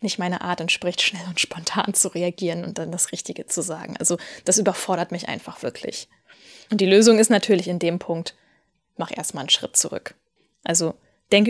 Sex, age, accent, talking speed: female, 10-29, German, 190 wpm